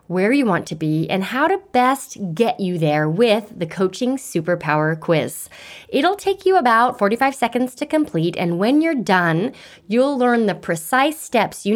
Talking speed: 180 wpm